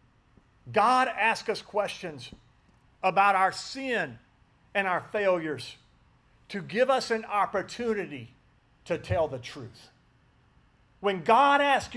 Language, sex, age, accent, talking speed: English, male, 50-69, American, 110 wpm